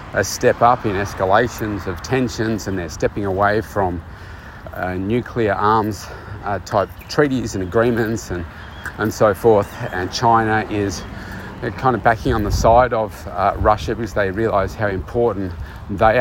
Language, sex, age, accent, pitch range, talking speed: English, male, 40-59, Australian, 90-115 Hz, 150 wpm